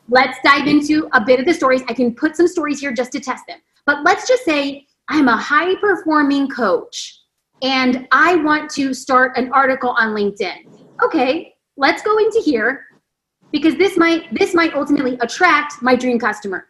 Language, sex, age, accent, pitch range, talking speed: English, female, 30-49, American, 240-310 Hz, 185 wpm